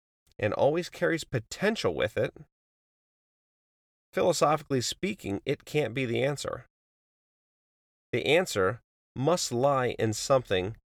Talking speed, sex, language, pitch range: 105 wpm, male, English, 95-135 Hz